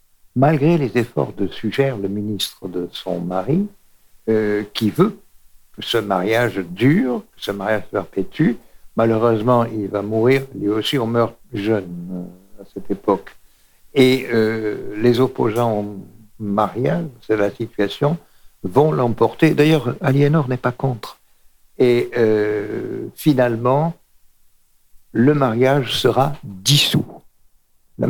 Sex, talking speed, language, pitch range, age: male, 125 wpm, French, 105-145 Hz, 60-79